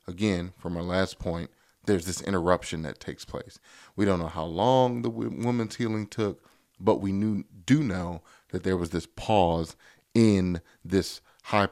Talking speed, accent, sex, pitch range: 165 wpm, American, male, 90-110 Hz